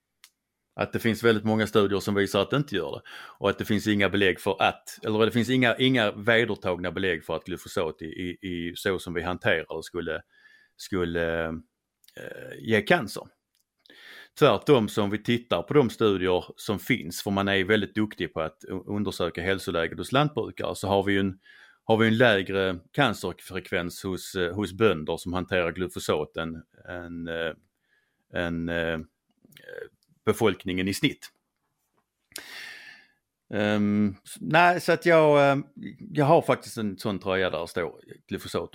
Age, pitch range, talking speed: 30-49, 90-110 Hz, 150 wpm